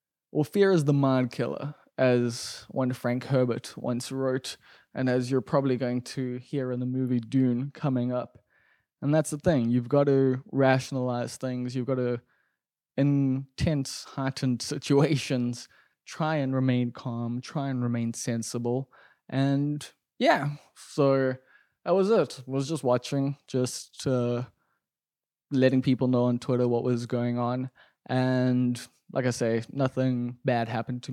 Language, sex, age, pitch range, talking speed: English, male, 20-39, 120-135 Hz, 150 wpm